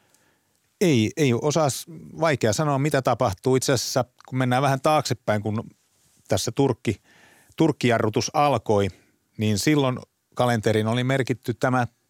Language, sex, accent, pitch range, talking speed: Finnish, male, native, 110-140 Hz, 120 wpm